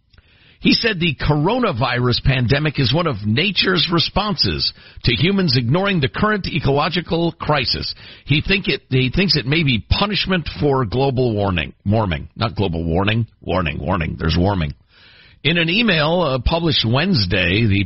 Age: 50-69